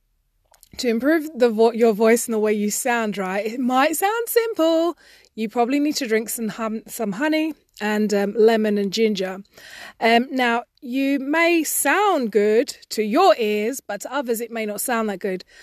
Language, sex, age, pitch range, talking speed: English, female, 20-39, 210-260 Hz, 185 wpm